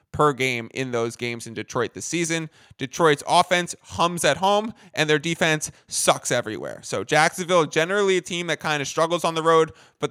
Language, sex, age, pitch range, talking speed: English, male, 20-39, 140-165 Hz, 190 wpm